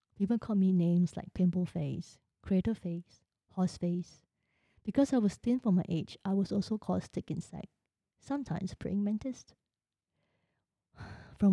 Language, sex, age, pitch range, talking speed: English, female, 20-39, 175-205 Hz, 145 wpm